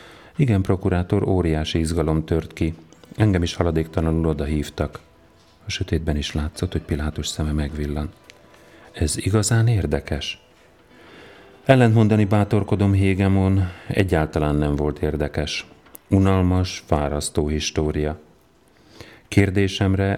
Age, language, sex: 40-59, Hungarian, male